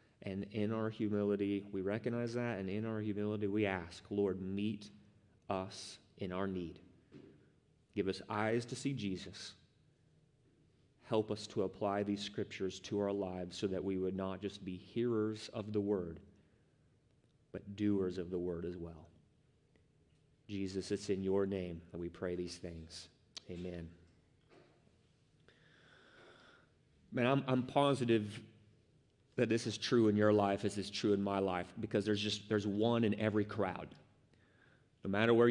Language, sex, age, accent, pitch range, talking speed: English, male, 30-49, American, 100-120 Hz, 150 wpm